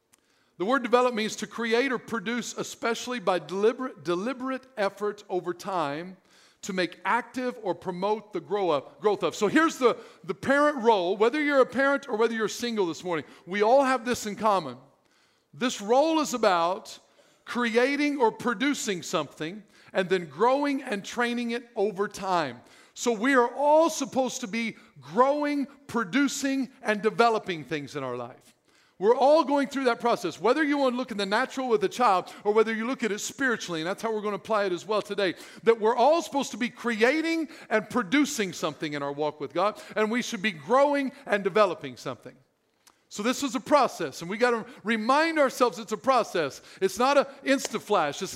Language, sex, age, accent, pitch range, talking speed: English, male, 50-69, American, 190-255 Hz, 190 wpm